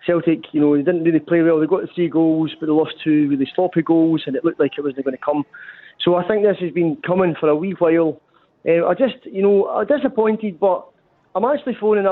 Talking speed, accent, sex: 250 wpm, British, male